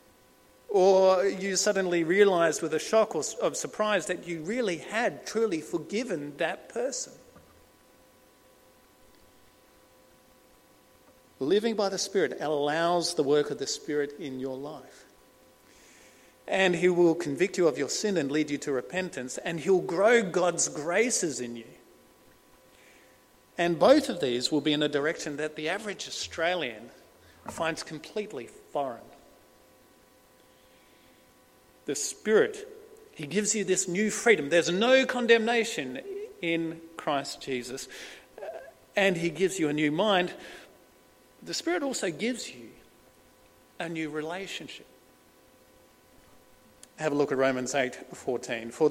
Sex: male